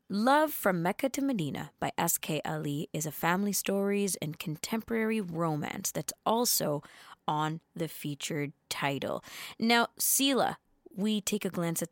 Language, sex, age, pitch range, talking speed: English, female, 20-39, 160-220 Hz, 140 wpm